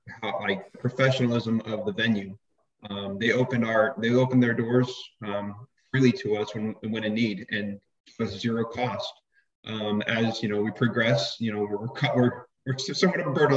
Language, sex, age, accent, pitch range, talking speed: English, male, 30-49, American, 110-130 Hz, 175 wpm